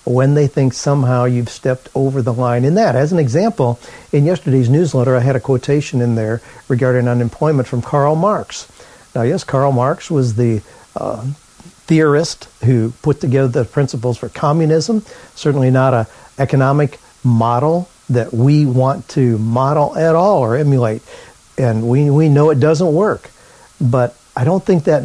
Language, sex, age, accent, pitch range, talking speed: English, male, 50-69, American, 120-155 Hz, 165 wpm